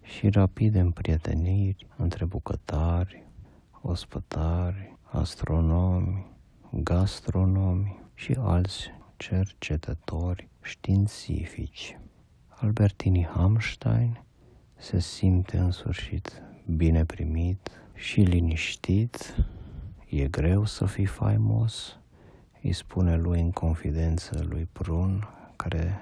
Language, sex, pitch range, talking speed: Romanian, male, 85-100 Hz, 85 wpm